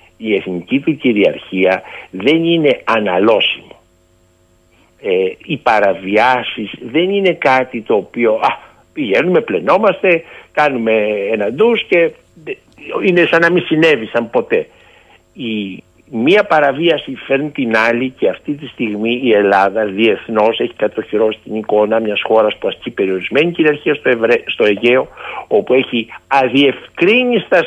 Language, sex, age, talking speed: Greek, male, 60-79, 125 wpm